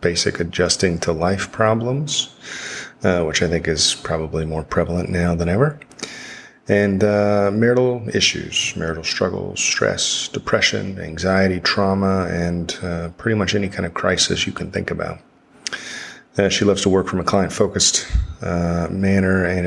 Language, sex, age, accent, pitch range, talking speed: English, male, 30-49, American, 85-110 Hz, 145 wpm